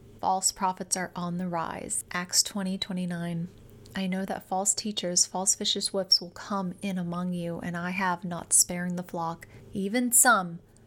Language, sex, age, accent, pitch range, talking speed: English, female, 30-49, American, 180-205 Hz, 175 wpm